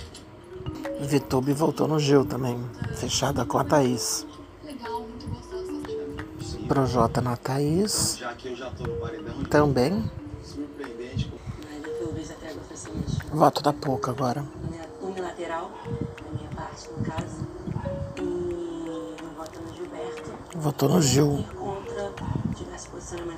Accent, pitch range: Brazilian, 115-155 Hz